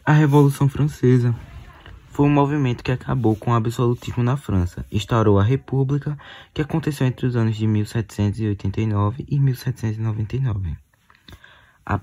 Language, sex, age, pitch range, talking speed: Portuguese, male, 20-39, 95-120 Hz, 125 wpm